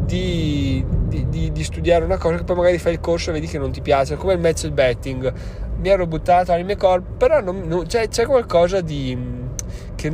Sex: male